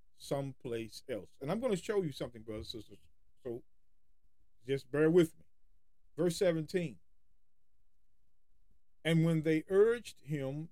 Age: 40-59